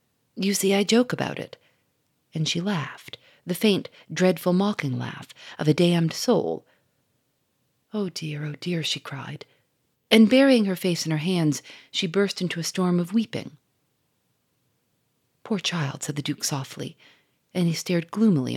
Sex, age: female, 40-59